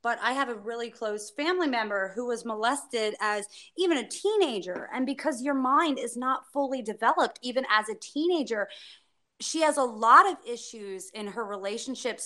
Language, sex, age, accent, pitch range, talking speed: English, female, 30-49, American, 215-305 Hz, 175 wpm